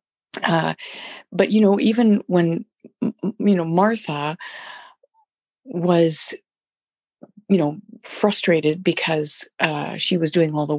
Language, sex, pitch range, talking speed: English, female, 160-235 Hz, 110 wpm